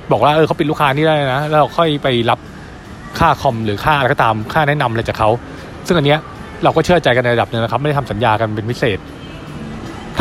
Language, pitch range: Thai, 125-160 Hz